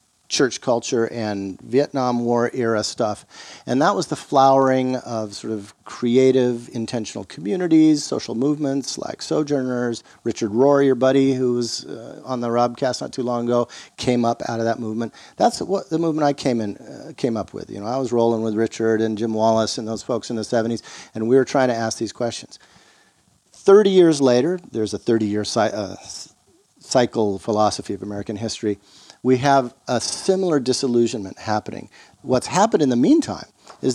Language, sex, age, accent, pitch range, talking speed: English, male, 50-69, American, 110-130 Hz, 175 wpm